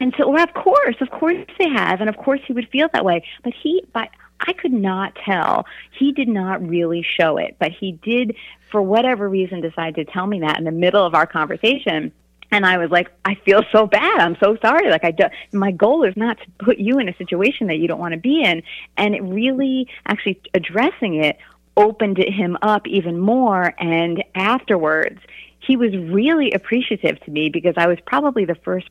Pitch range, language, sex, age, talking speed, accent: 170-230 Hz, English, female, 30-49, 215 wpm, American